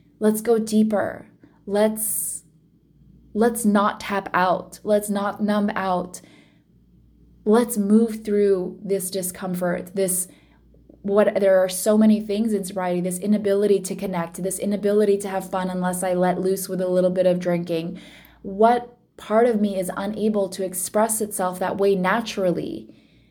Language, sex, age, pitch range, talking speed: English, female, 20-39, 175-200 Hz, 145 wpm